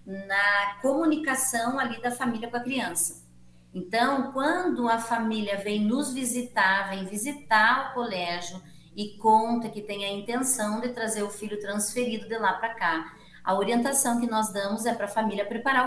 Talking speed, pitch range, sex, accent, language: 165 wpm, 195-250 Hz, female, Brazilian, Portuguese